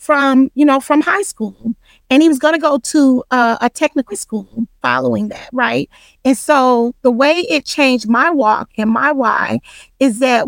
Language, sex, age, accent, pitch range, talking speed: English, female, 40-59, American, 235-290 Hz, 190 wpm